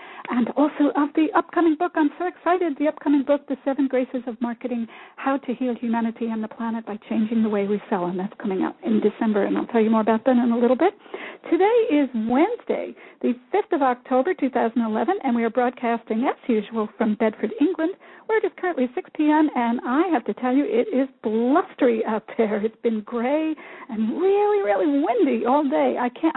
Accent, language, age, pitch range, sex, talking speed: American, English, 60-79, 235-315 Hz, female, 205 wpm